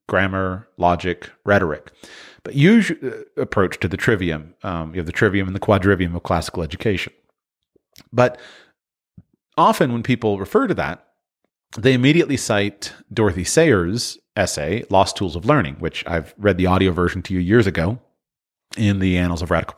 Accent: American